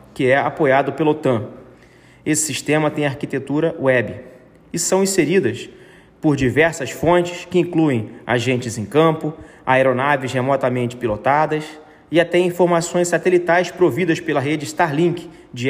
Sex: male